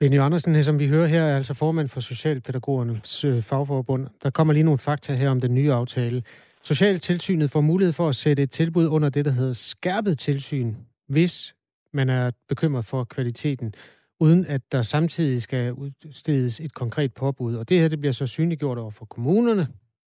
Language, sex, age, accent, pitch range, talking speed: Danish, male, 30-49, native, 125-160 Hz, 180 wpm